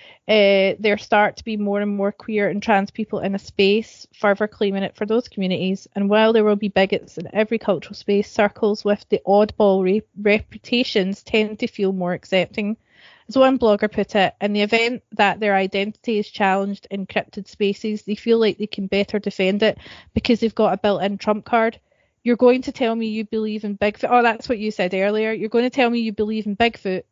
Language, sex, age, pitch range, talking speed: English, female, 20-39, 195-225 Hz, 210 wpm